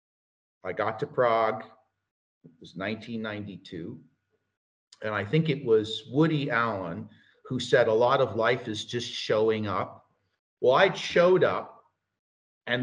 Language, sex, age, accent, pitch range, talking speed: Czech, male, 50-69, American, 105-125 Hz, 135 wpm